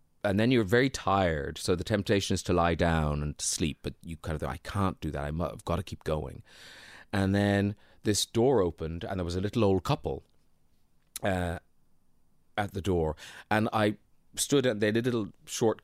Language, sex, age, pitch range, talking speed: English, male, 30-49, 85-125 Hz, 195 wpm